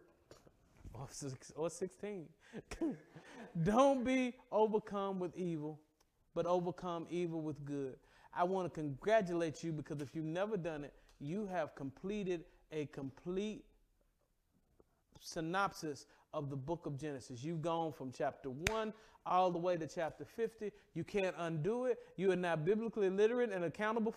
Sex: male